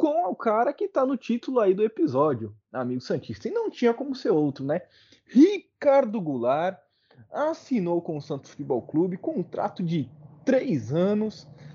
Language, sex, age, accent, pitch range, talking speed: Portuguese, male, 20-39, Brazilian, 130-200 Hz, 160 wpm